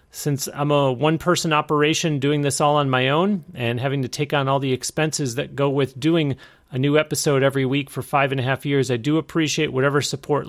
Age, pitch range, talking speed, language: 30-49, 130-155 Hz, 225 wpm, English